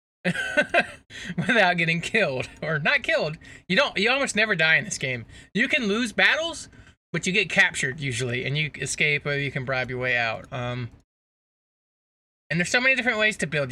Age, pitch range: 20-39, 125-160 Hz